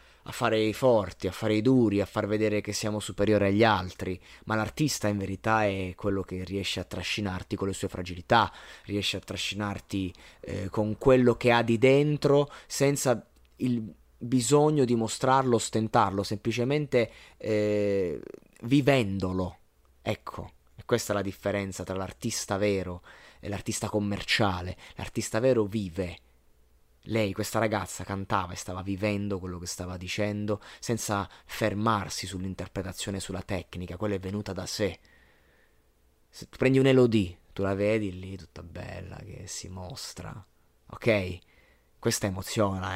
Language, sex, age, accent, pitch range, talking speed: Italian, male, 20-39, native, 95-110 Hz, 140 wpm